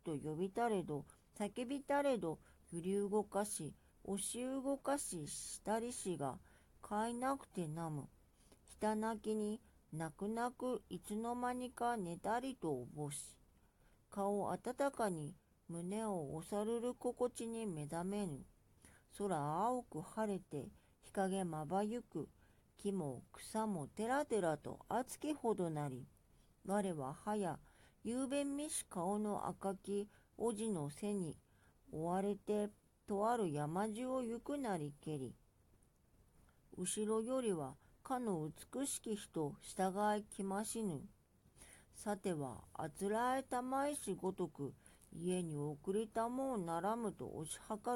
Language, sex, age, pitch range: Japanese, female, 50-69, 155-225 Hz